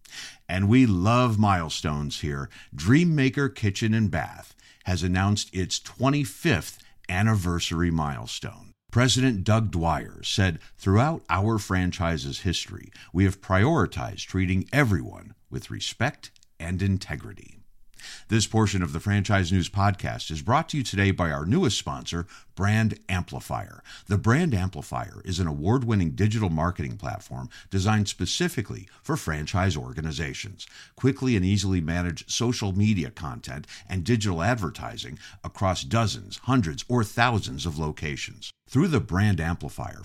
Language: English